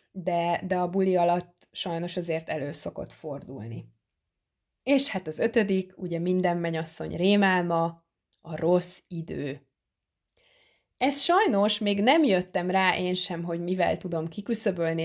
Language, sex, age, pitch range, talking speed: Hungarian, female, 20-39, 165-195 Hz, 130 wpm